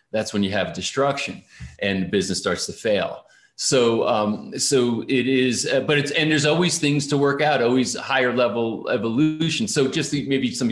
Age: 40-59